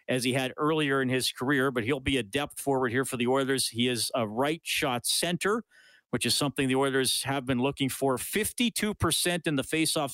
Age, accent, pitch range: 40-59, American, 125-165 Hz